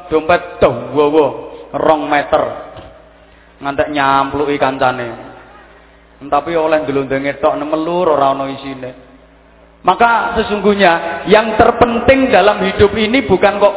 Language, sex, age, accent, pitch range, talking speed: English, male, 30-49, Indonesian, 165-225 Hz, 95 wpm